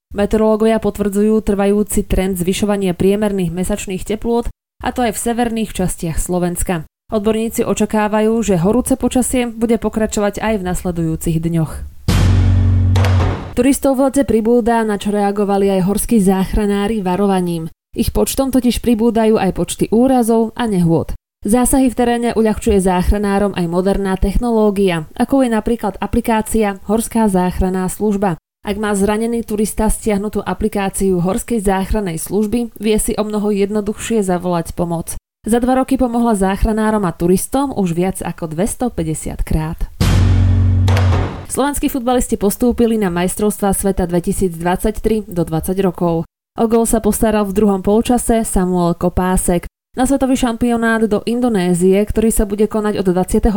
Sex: female